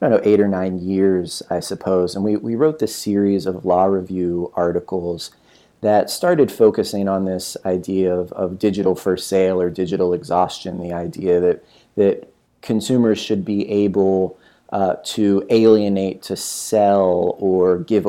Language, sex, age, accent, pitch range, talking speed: English, male, 30-49, American, 95-105 Hz, 160 wpm